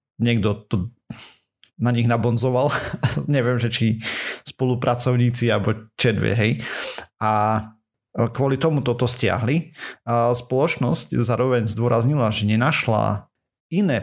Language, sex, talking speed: Slovak, male, 105 wpm